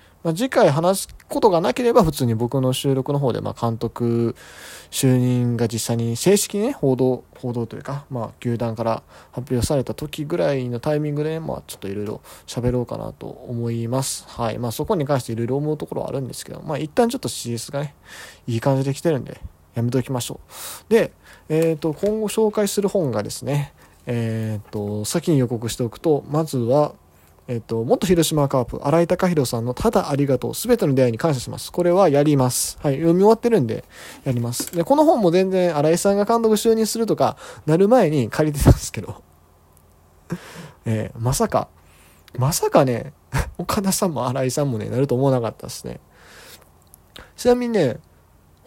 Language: Japanese